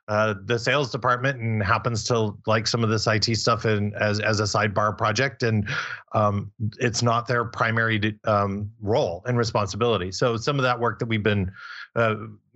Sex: male